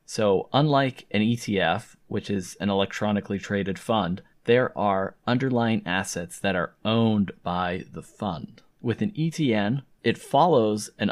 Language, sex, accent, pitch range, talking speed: English, male, American, 90-115 Hz, 140 wpm